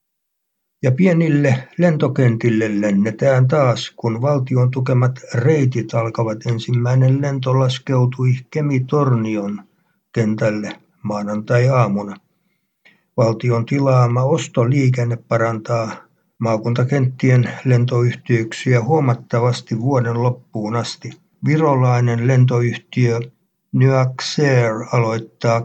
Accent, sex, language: native, male, Finnish